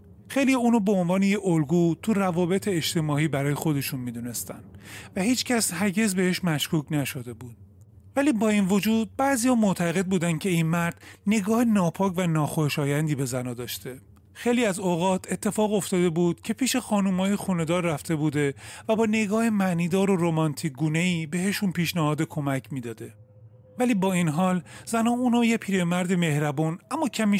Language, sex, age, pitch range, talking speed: Persian, male, 30-49, 145-205 Hz, 160 wpm